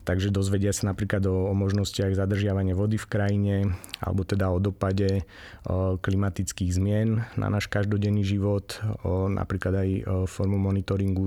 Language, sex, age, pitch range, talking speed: Slovak, male, 30-49, 95-105 Hz, 145 wpm